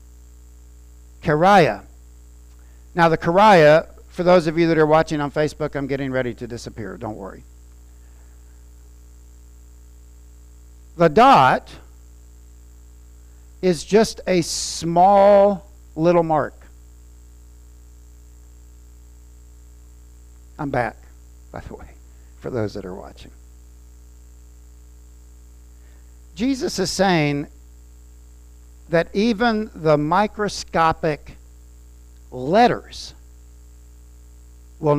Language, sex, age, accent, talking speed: English, male, 60-79, American, 80 wpm